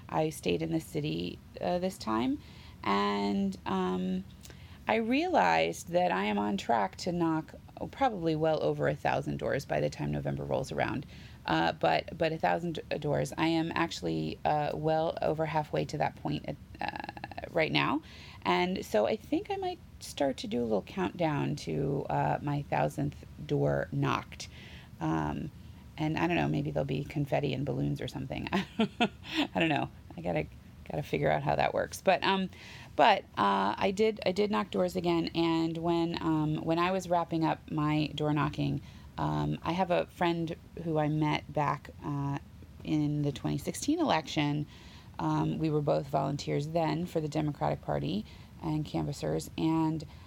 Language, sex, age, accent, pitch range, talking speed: English, female, 30-49, American, 110-175 Hz, 170 wpm